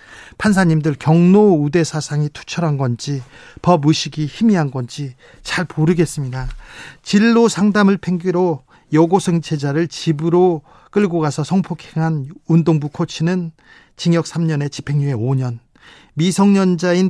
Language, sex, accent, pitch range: Korean, male, native, 145-180 Hz